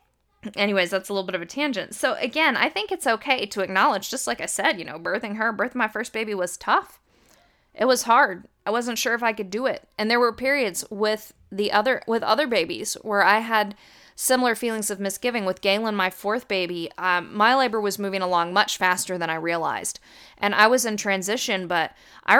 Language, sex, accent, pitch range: English, female, American, 190-230 Hz